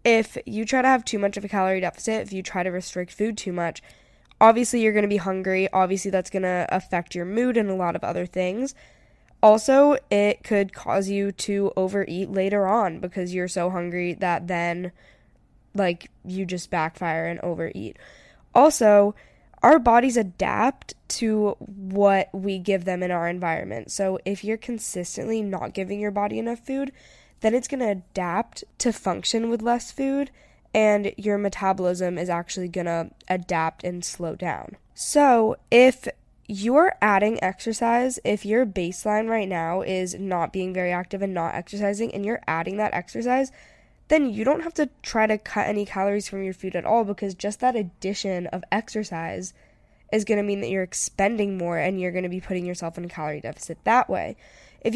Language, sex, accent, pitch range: English, female, American, 180-220 Hz